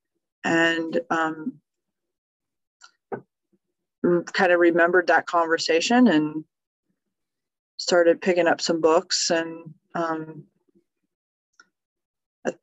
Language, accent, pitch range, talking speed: English, American, 165-195 Hz, 75 wpm